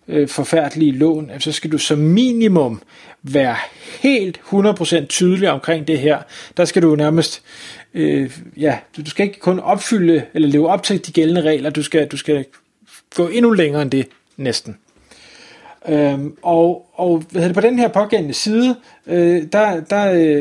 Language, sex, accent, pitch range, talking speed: Danish, male, native, 155-205 Hz, 145 wpm